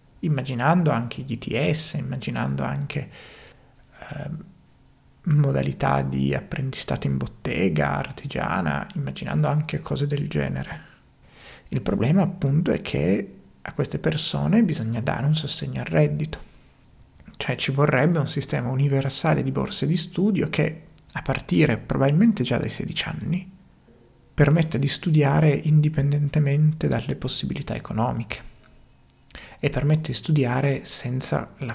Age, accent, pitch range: 30-49, native, 125-155 Hz